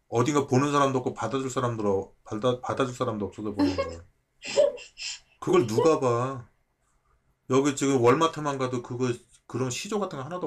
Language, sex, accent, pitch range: Korean, male, native, 110-145 Hz